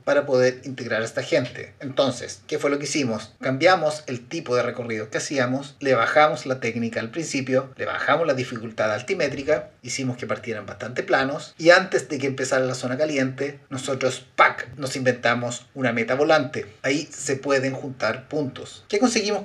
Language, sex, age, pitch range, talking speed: Spanish, male, 30-49, 125-150 Hz, 175 wpm